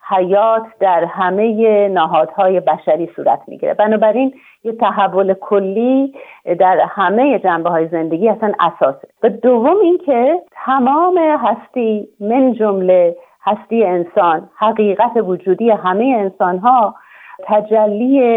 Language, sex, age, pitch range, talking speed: Persian, female, 40-59, 185-245 Hz, 105 wpm